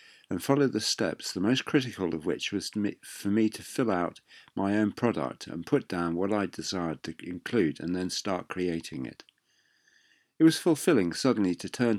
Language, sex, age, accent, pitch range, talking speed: English, male, 50-69, British, 85-120 Hz, 185 wpm